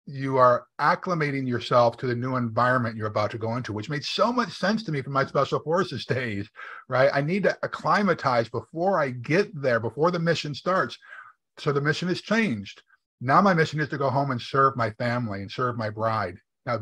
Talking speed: 210 wpm